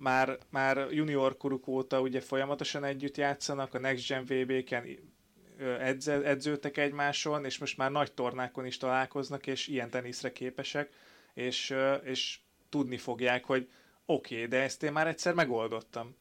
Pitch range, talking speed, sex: 120-135 Hz, 150 wpm, male